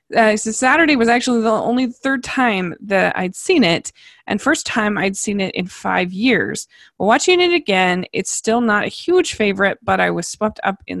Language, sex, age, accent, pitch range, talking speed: English, female, 20-39, American, 180-245 Hz, 205 wpm